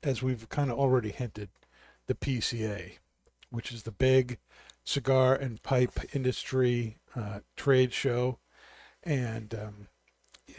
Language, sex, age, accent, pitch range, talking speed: English, male, 50-69, American, 105-130 Hz, 125 wpm